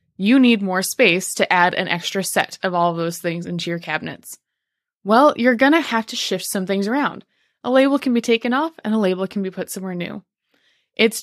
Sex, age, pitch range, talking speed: female, 20-39, 185-250 Hz, 220 wpm